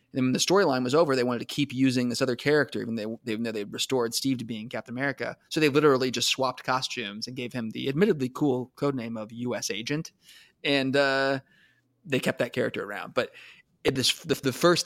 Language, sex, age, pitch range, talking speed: English, male, 20-39, 120-140 Hz, 205 wpm